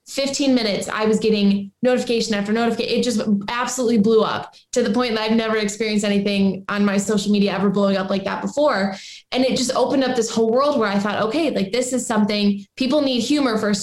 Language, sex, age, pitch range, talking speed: English, female, 20-39, 200-230 Hz, 220 wpm